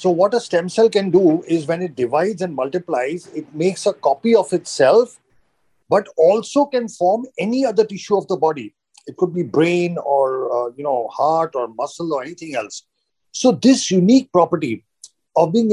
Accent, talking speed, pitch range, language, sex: Indian, 185 wpm, 165-230 Hz, English, male